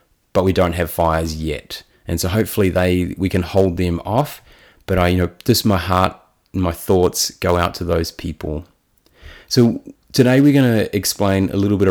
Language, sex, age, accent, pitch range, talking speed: English, male, 30-49, Australian, 90-105 Hz, 185 wpm